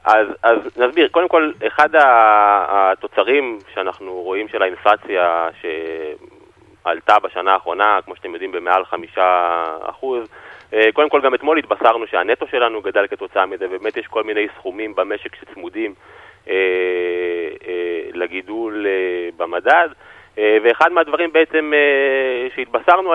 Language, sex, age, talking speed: Hebrew, male, 30-49, 125 wpm